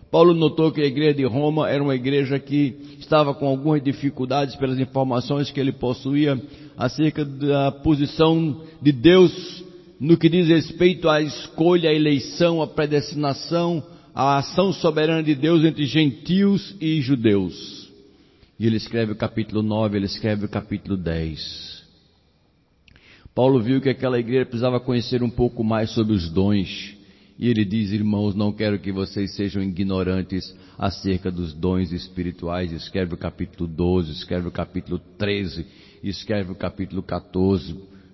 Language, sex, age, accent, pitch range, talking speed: Portuguese, male, 60-79, Brazilian, 100-140 Hz, 150 wpm